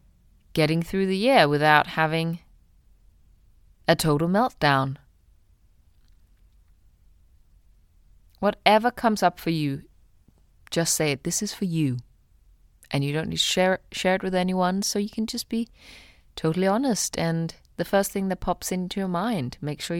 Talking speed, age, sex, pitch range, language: 145 wpm, 30-49, female, 135-205 Hz, English